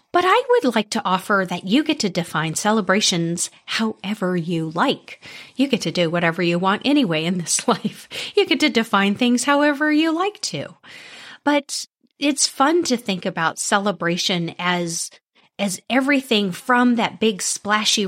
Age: 40-59